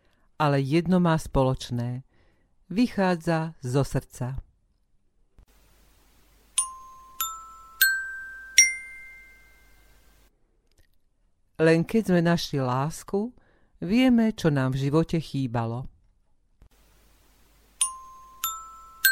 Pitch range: 140-210 Hz